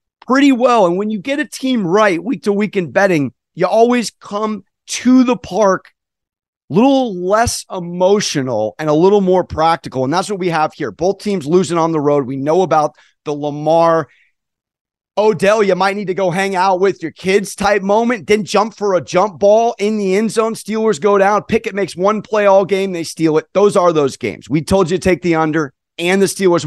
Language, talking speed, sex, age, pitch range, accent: English, 210 wpm, male, 30-49, 180-240 Hz, American